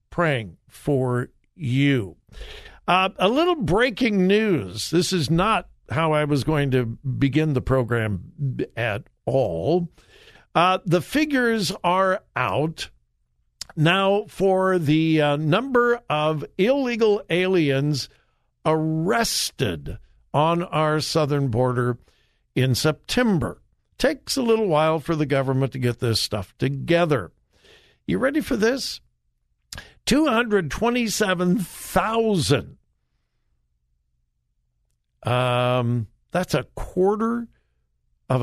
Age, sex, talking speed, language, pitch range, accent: 60-79, male, 95 wpm, English, 125-195 Hz, American